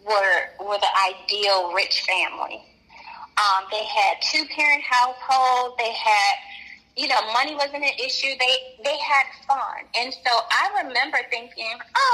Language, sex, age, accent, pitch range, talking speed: English, female, 10-29, American, 215-285 Hz, 150 wpm